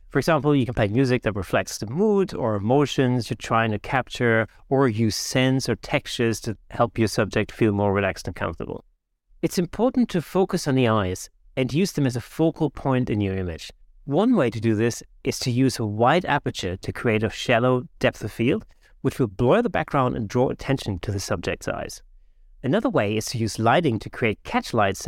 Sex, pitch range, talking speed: male, 105-145 Hz, 210 wpm